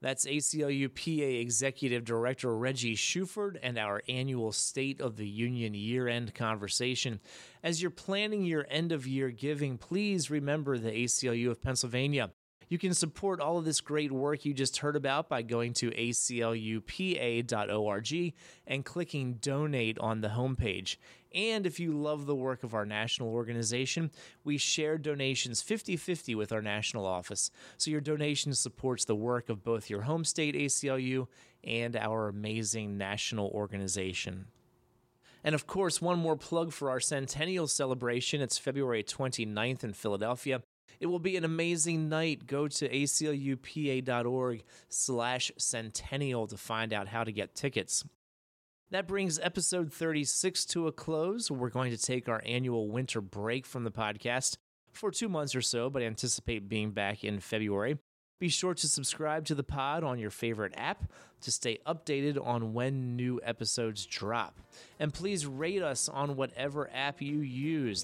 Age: 30-49